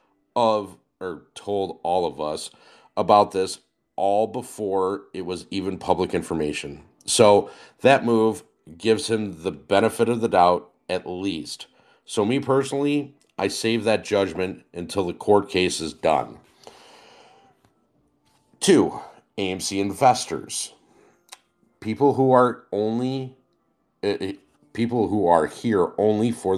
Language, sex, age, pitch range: English, male, 40-59, 85-110 Hz